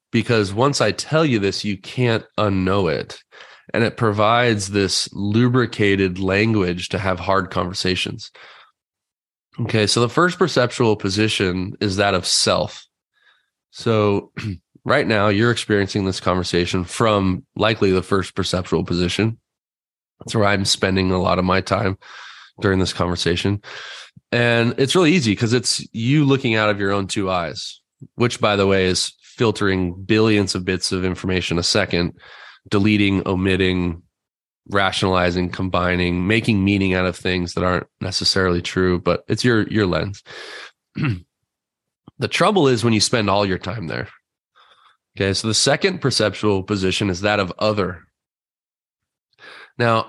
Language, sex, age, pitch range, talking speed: English, male, 20-39, 95-110 Hz, 145 wpm